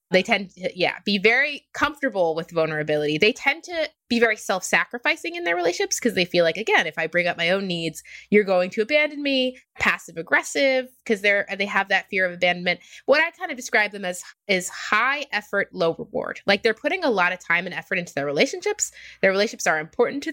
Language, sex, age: English, female, 20-39